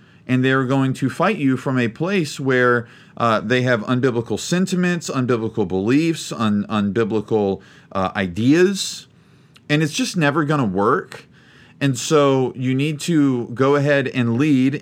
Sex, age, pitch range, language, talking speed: male, 40-59, 120-155 Hz, English, 150 wpm